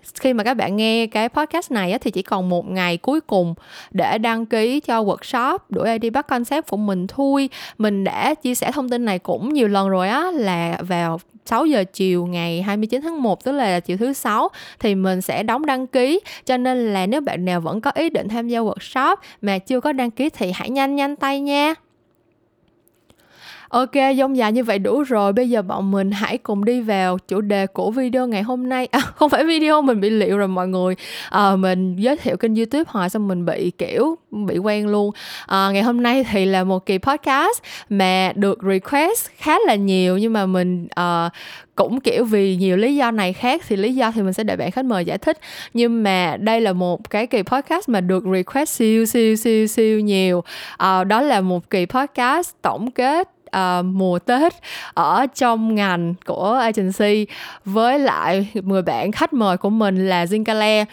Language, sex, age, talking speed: Vietnamese, female, 10-29, 205 wpm